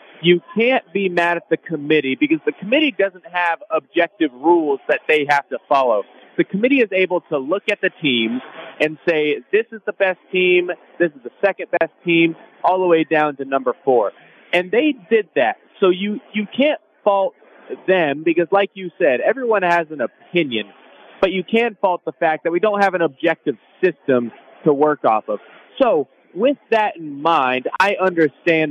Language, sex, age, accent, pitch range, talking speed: English, male, 30-49, American, 160-210 Hz, 190 wpm